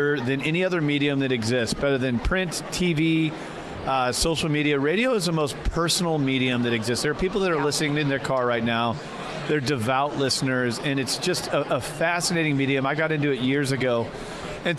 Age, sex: 40-59, male